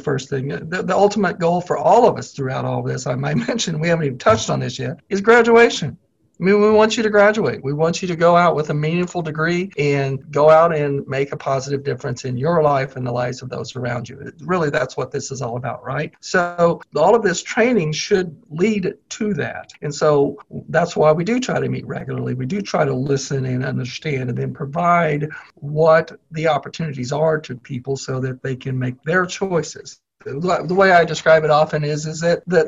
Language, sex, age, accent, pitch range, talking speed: English, male, 50-69, American, 140-180 Hz, 220 wpm